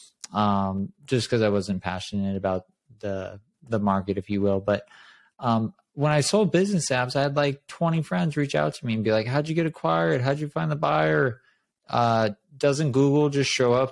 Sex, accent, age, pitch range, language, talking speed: male, American, 20-39, 105-135 Hz, English, 205 wpm